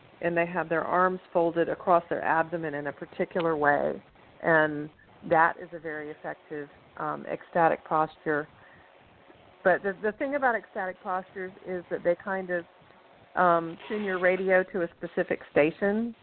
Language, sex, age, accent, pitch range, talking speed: English, female, 40-59, American, 160-185 Hz, 155 wpm